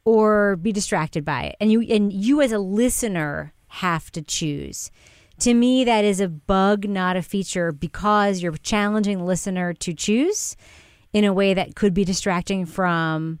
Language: English